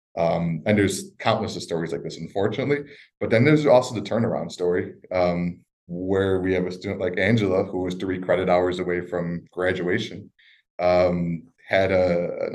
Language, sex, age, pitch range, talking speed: English, male, 20-39, 90-95 Hz, 165 wpm